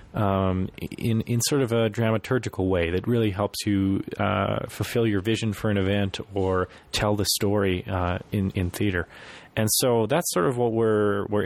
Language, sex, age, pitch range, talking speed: English, male, 30-49, 95-110 Hz, 185 wpm